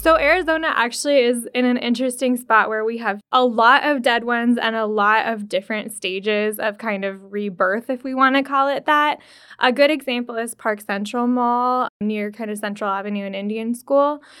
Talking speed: 200 wpm